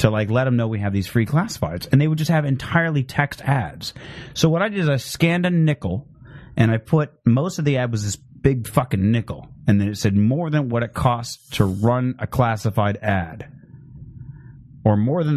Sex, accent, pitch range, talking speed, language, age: male, American, 110-145 Hz, 220 wpm, English, 30-49